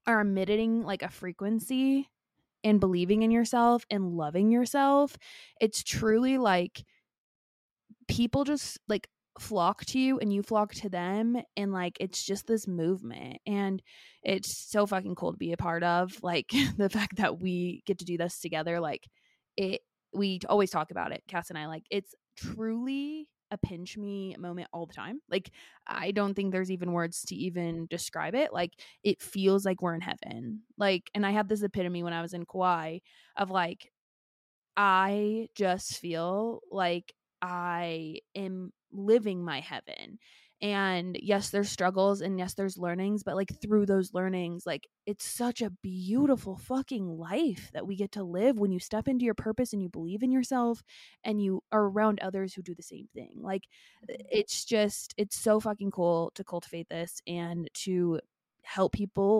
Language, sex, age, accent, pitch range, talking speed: English, female, 20-39, American, 180-220 Hz, 175 wpm